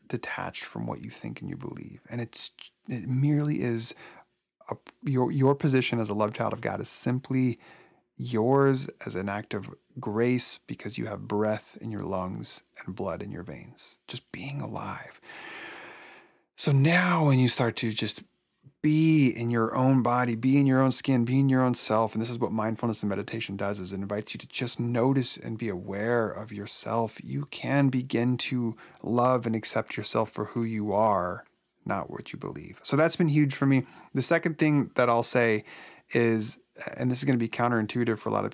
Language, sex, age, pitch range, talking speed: English, male, 30-49, 110-135 Hz, 200 wpm